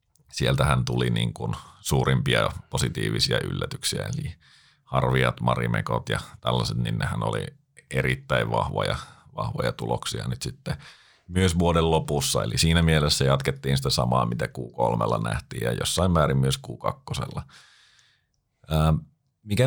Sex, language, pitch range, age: male, Finnish, 65-90 Hz, 30-49